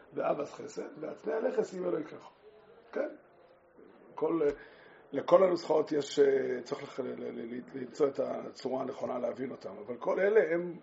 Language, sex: Hebrew, male